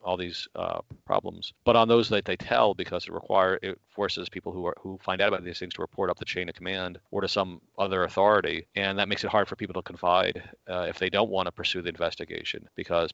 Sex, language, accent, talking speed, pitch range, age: male, English, American, 250 wpm, 85-95 Hz, 40-59